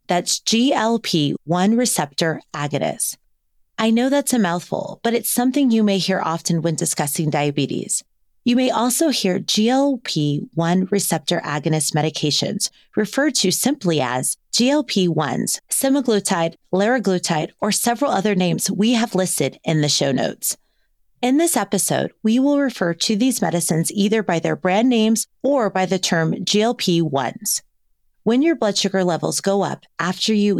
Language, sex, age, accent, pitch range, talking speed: English, female, 30-49, American, 170-240 Hz, 145 wpm